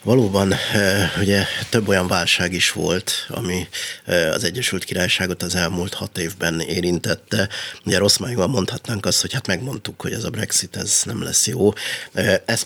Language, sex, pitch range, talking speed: Hungarian, male, 90-100 Hz, 150 wpm